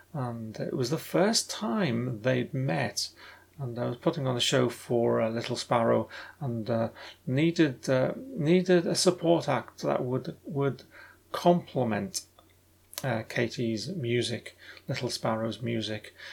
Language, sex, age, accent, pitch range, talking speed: English, male, 30-49, British, 115-150 Hz, 135 wpm